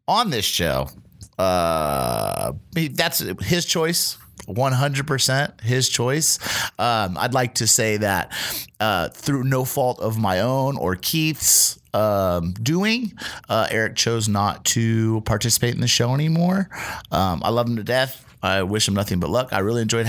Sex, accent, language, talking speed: male, American, English, 155 wpm